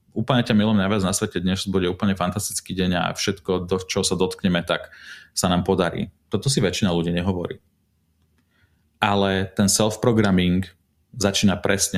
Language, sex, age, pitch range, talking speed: Slovak, male, 30-49, 90-105 Hz, 150 wpm